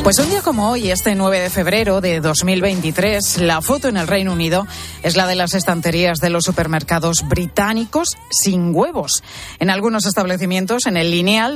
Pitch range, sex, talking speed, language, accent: 165-200 Hz, female, 175 wpm, Spanish, Spanish